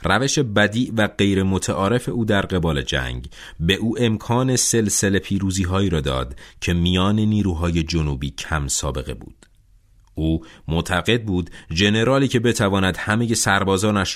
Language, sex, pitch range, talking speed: Persian, male, 80-110 Hz, 135 wpm